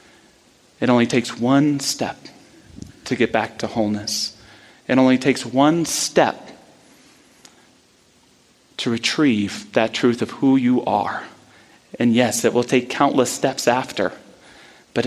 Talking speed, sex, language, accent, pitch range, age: 125 wpm, male, English, American, 110-140 Hz, 30-49